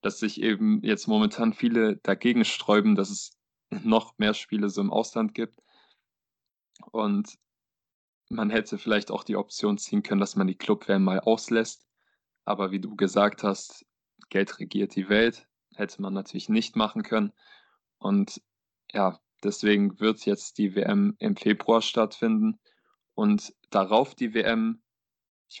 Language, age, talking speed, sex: German, 20-39, 145 wpm, male